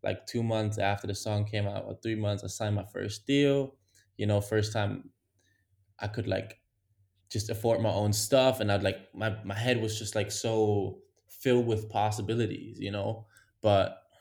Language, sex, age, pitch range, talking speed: English, male, 10-29, 105-125 Hz, 185 wpm